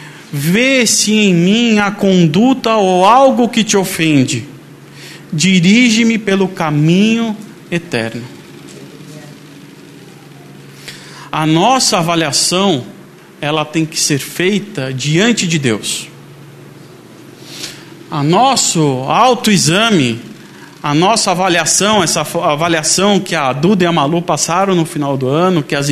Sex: male